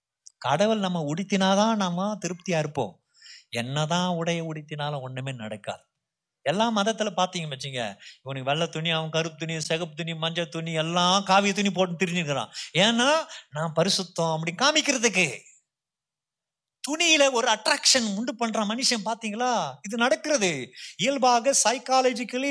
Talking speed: 110 wpm